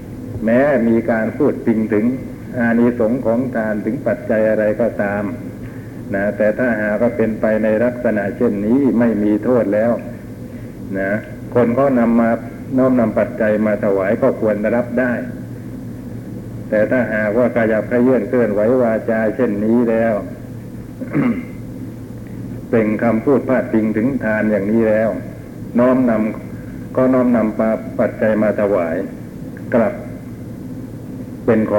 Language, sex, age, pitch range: Thai, male, 60-79, 105-120 Hz